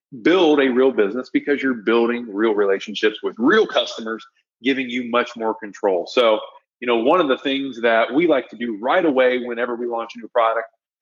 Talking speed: 200 wpm